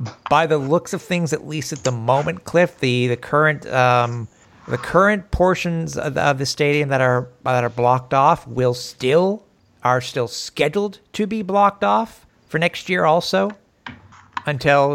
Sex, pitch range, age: male, 115-150 Hz, 50-69